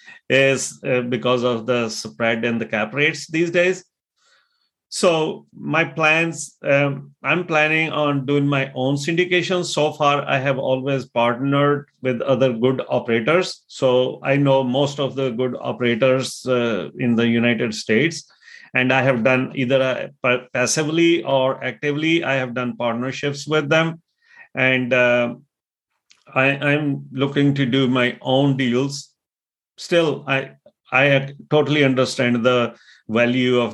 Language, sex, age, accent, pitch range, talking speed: English, male, 30-49, Indian, 115-140 Hz, 135 wpm